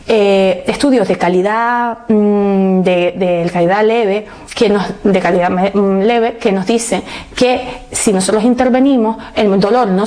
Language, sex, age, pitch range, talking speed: Spanish, female, 30-49, 185-245 Hz, 135 wpm